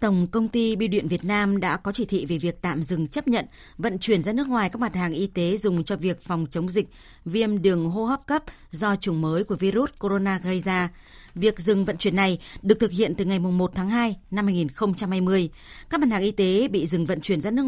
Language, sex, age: Vietnamese, female, 20-39